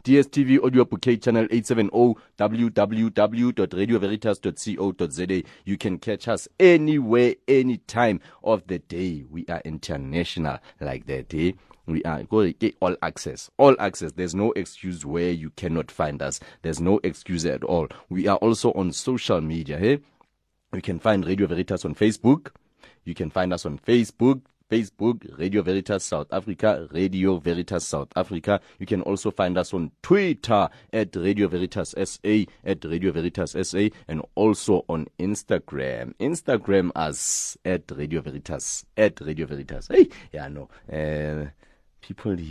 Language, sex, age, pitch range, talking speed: English, male, 30-49, 80-110 Hz, 140 wpm